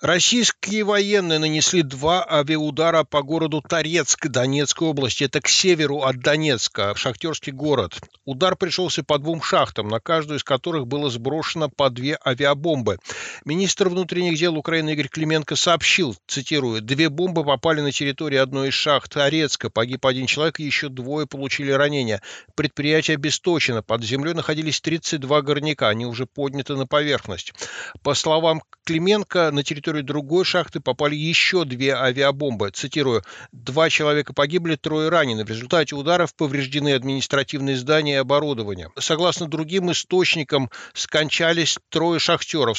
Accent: native